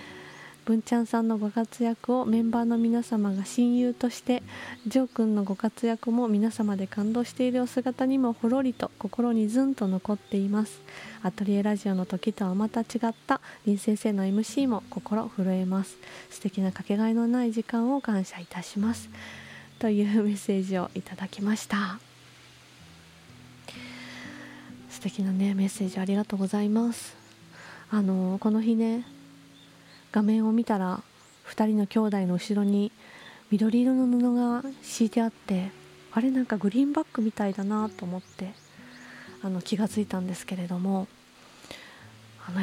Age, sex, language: 20-39, female, Japanese